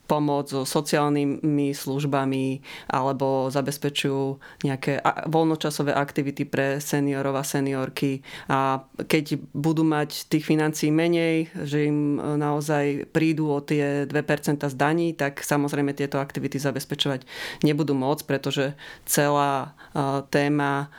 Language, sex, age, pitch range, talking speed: Slovak, female, 30-49, 140-150 Hz, 110 wpm